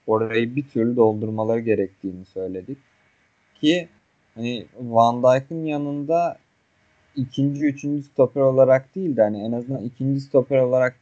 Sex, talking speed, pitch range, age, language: male, 125 wpm, 105-140 Hz, 30-49, Turkish